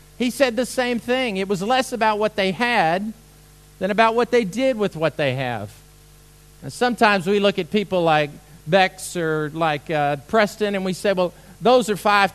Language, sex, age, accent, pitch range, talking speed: English, male, 50-69, American, 150-210 Hz, 195 wpm